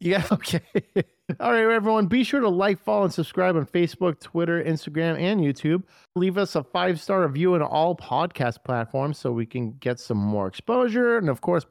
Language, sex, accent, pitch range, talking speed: English, male, American, 135-190 Hz, 190 wpm